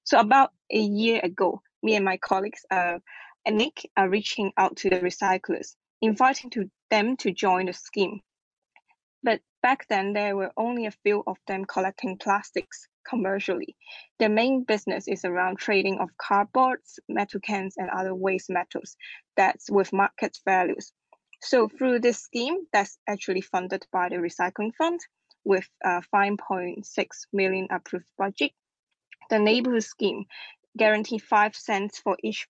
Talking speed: 150 wpm